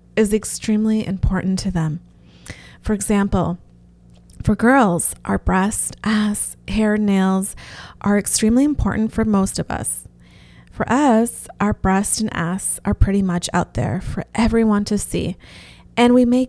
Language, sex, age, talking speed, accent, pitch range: English, female, 30-49, 140 wpm, American, 180-225 Hz